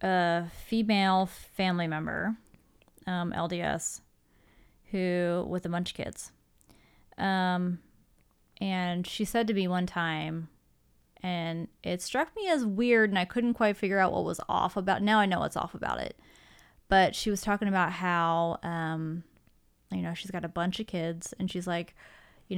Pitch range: 175-195 Hz